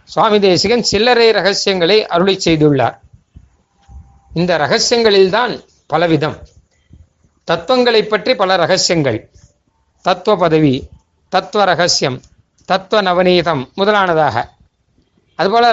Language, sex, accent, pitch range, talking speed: Tamil, male, native, 140-215 Hz, 85 wpm